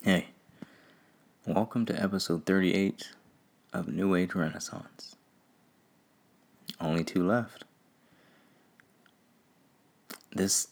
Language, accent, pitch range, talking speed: English, American, 80-90 Hz, 75 wpm